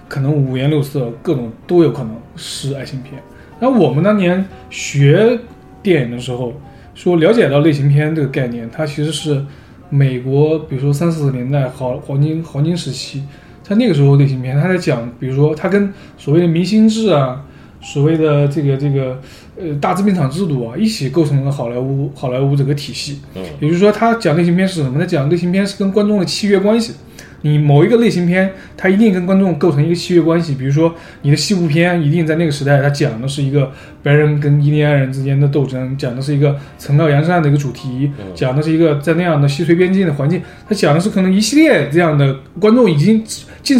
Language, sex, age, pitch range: Chinese, male, 20-39, 140-180 Hz